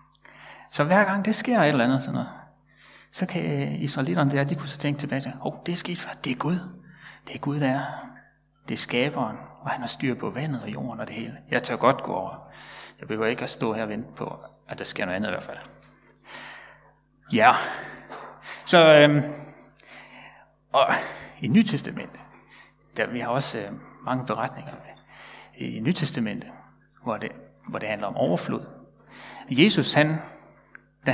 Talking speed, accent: 185 wpm, native